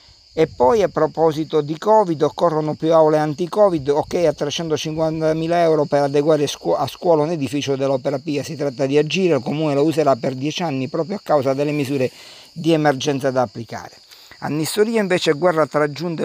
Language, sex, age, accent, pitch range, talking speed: Italian, male, 50-69, native, 135-165 Hz, 175 wpm